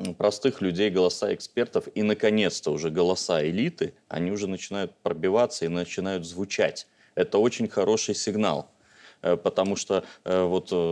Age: 30-49